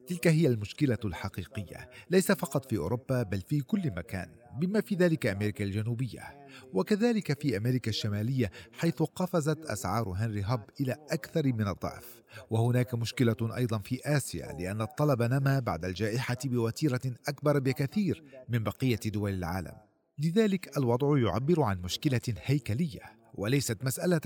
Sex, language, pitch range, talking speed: male, Arabic, 110-150 Hz, 135 wpm